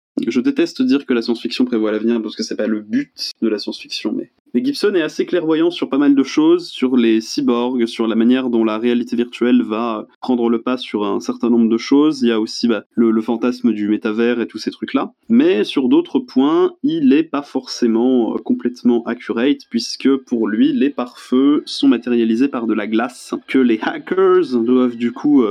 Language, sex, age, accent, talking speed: French, male, 20-39, French, 210 wpm